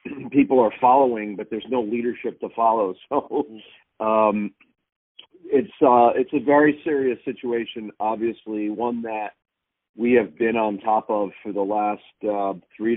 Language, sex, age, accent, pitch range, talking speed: English, male, 40-59, American, 100-115 Hz, 150 wpm